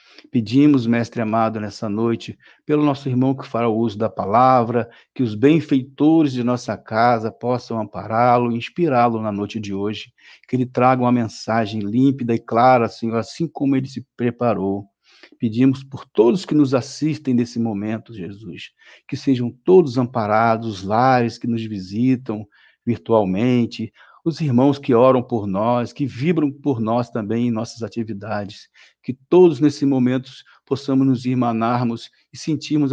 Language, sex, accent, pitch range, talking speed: Portuguese, male, Brazilian, 110-135 Hz, 155 wpm